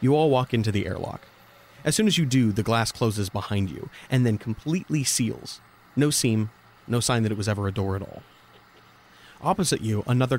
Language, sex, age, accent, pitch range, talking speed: English, male, 30-49, American, 105-130 Hz, 200 wpm